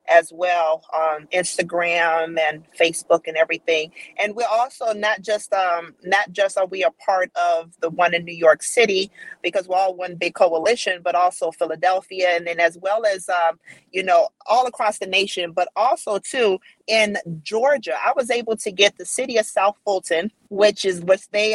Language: English